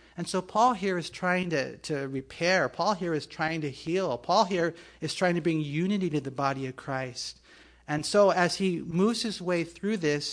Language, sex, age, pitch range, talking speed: English, male, 40-59, 150-195 Hz, 210 wpm